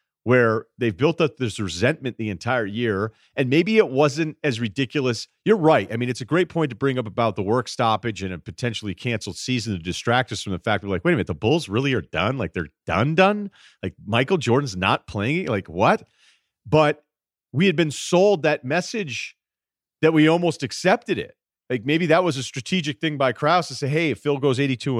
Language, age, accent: English, 40-59, American